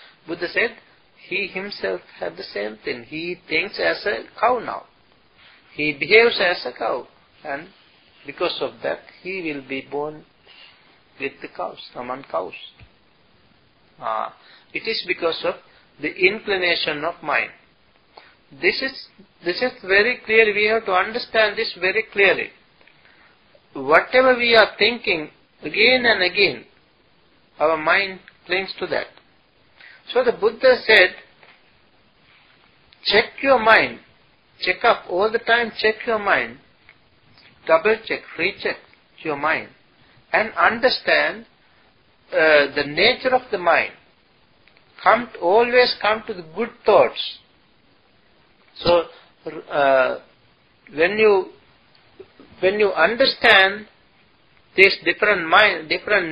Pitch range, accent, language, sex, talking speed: 165-230 Hz, Indian, English, male, 120 wpm